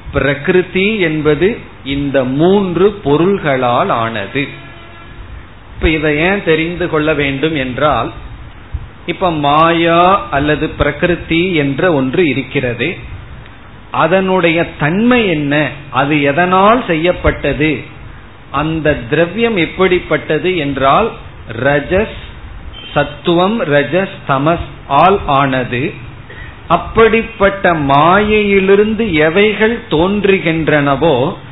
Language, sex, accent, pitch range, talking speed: Tamil, male, native, 135-180 Hz, 70 wpm